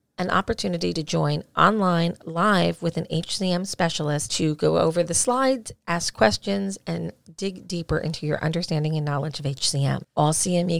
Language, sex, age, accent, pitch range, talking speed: English, female, 40-59, American, 150-185 Hz, 160 wpm